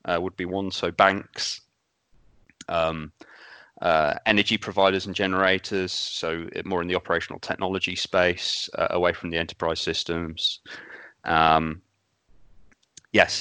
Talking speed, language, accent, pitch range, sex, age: 120 wpm, English, British, 85-95 Hz, male, 20-39